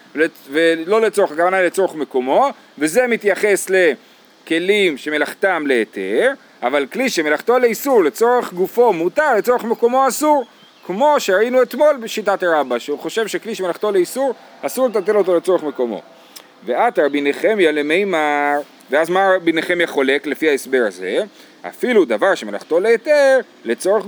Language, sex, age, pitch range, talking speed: Hebrew, male, 40-59, 165-245 Hz, 125 wpm